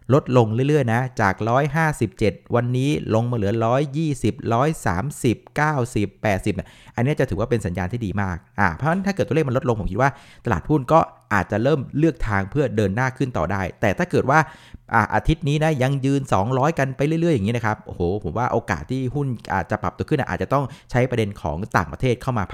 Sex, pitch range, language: male, 105-135 Hz, Thai